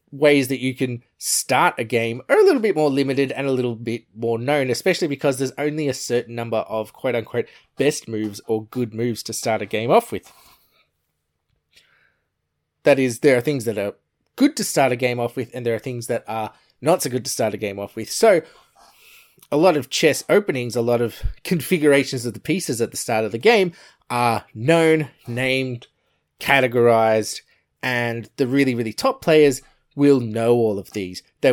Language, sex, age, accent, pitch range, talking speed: English, male, 20-39, Australian, 115-145 Hz, 195 wpm